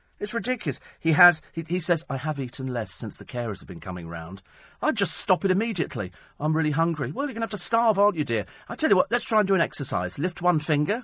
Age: 40-59